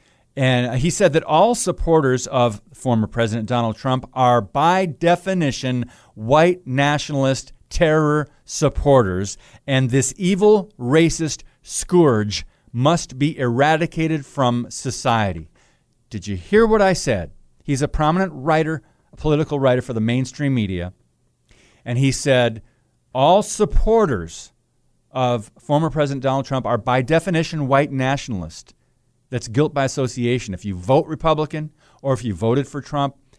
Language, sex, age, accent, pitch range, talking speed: English, male, 40-59, American, 120-150 Hz, 135 wpm